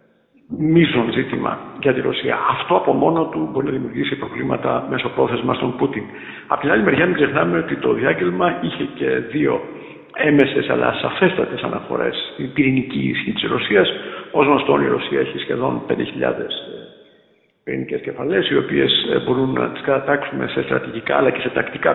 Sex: male